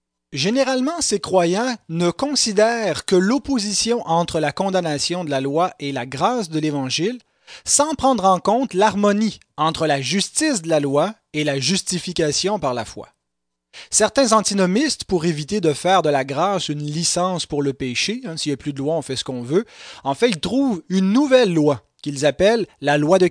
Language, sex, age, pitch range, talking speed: French, male, 30-49, 145-205 Hz, 190 wpm